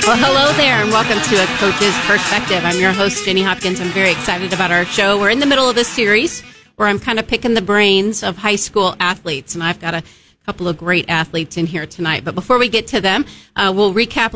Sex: female